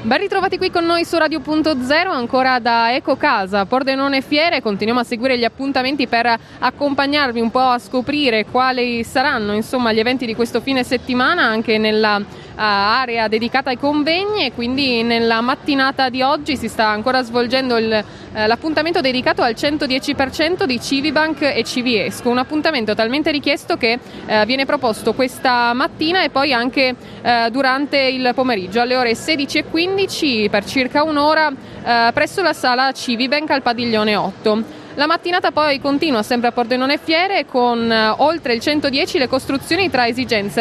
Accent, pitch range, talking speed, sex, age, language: native, 235-295 Hz, 160 wpm, female, 20-39, Italian